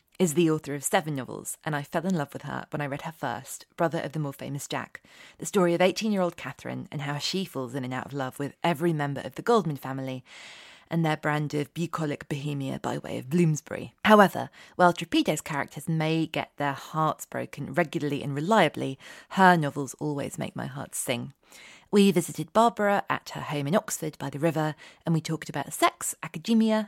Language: English